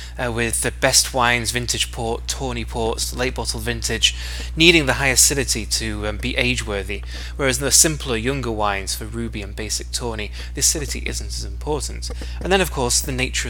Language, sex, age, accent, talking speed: English, male, 20-39, British, 180 wpm